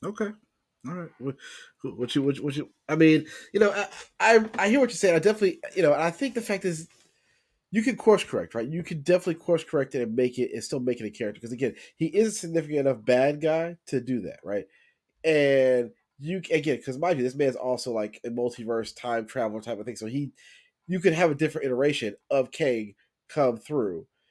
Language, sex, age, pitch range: English, male, 30-49, 120-175 Hz